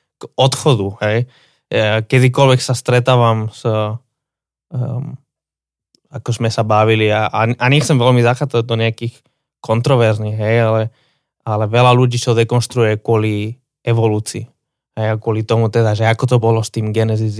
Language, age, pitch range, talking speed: Slovak, 20-39, 115-150 Hz, 140 wpm